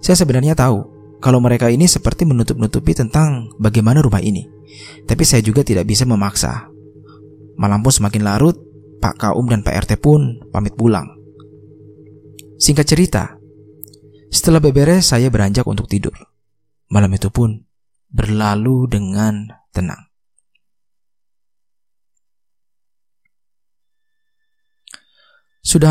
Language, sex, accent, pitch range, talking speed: Indonesian, male, native, 105-150 Hz, 105 wpm